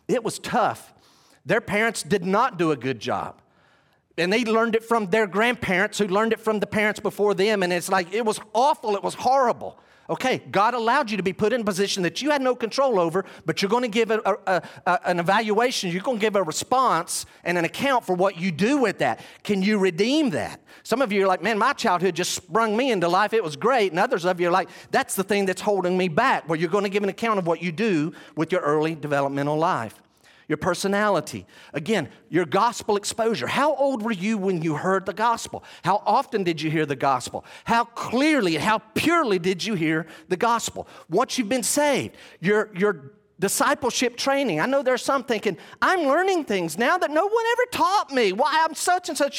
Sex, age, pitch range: male, 50-69, 180-240 Hz